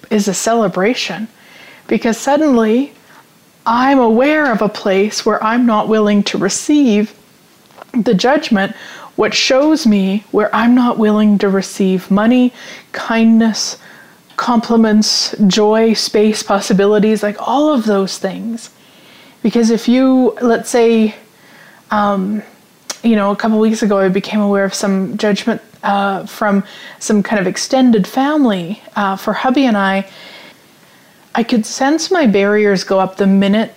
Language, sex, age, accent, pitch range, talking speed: English, female, 20-39, American, 200-240 Hz, 135 wpm